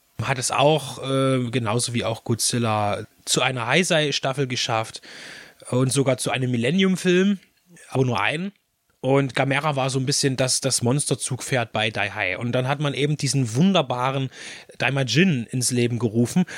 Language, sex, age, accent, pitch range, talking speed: German, male, 30-49, German, 115-145 Hz, 150 wpm